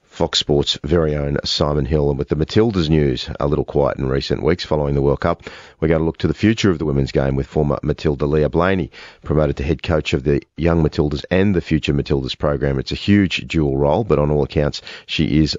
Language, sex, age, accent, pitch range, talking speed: English, male, 40-59, Australian, 70-80 Hz, 235 wpm